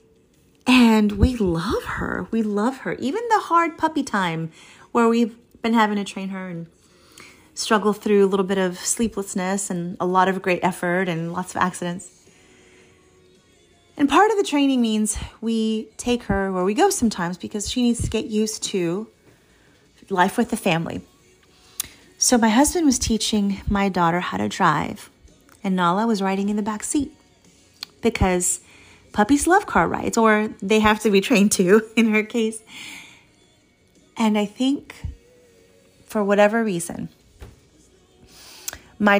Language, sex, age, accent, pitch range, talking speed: English, female, 30-49, American, 185-230 Hz, 155 wpm